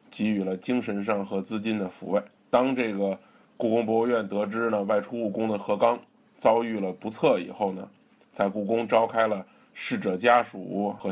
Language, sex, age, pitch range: Chinese, male, 20-39, 100-120 Hz